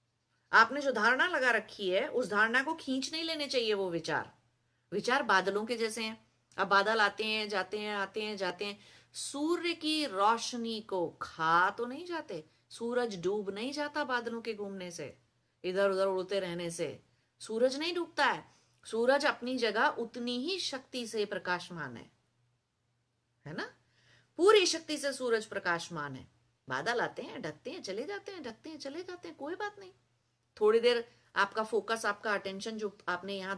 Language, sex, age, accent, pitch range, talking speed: English, female, 30-49, Indian, 175-270 Hz, 125 wpm